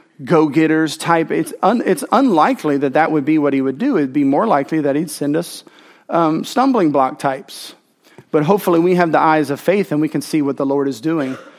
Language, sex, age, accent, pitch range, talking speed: English, male, 40-59, American, 145-190 Hz, 215 wpm